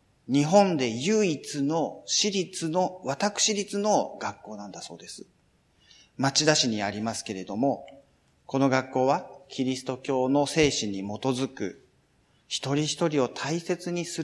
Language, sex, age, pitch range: Japanese, male, 40-59, 100-160 Hz